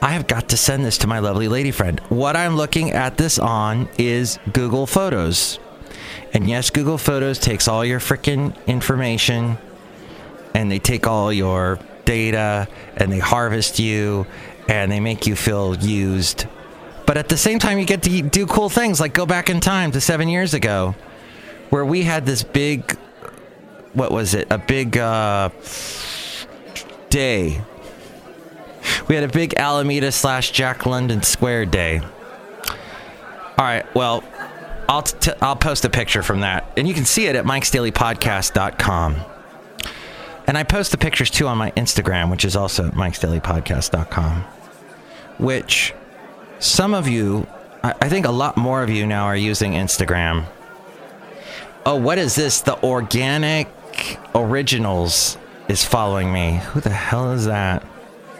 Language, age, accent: English, 30-49, American